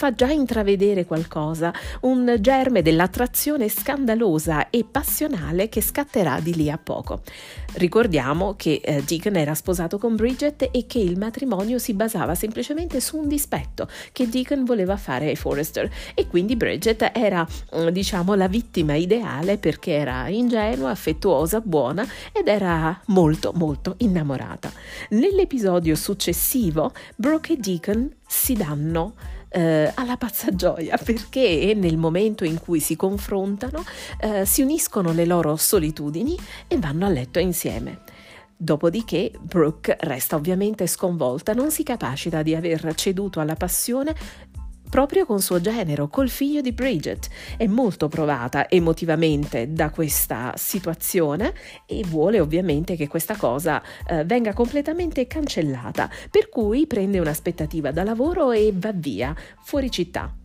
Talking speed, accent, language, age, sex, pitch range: 130 wpm, native, Italian, 40-59, female, 160-235 Hz